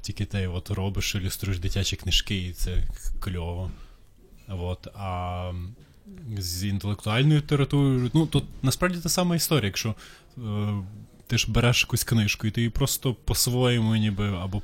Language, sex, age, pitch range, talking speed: Ukrainian, male, 20-39, 100-115 Hz, 140 wpm